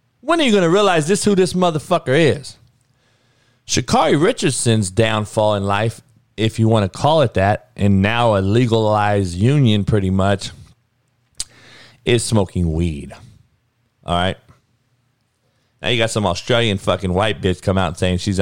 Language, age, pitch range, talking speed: English, 40-59, 105-130 Hz, 155 wpm